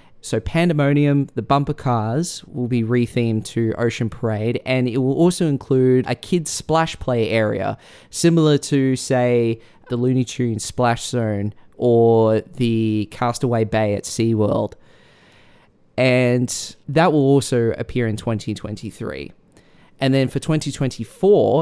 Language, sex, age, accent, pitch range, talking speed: English, male, 20-39, Australian, 110-140 Hz, 130 wpm